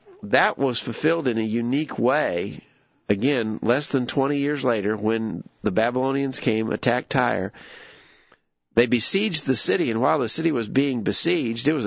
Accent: American